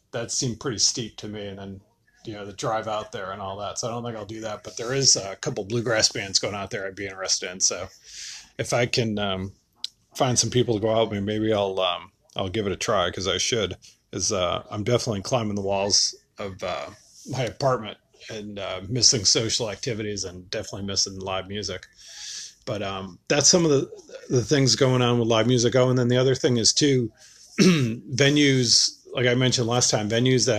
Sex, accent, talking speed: male, American, 220 wpm